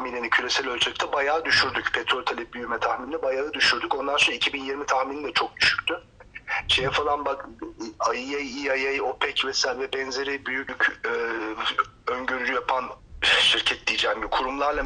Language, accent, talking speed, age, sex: Turkish, native, 145 wpm, 40-59, male